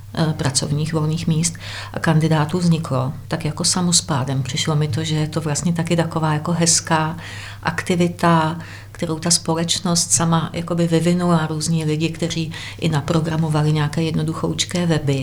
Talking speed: 130 wpm